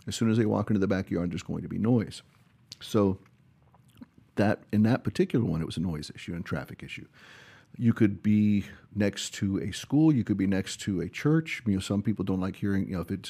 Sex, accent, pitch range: male, American, 95-115 Hz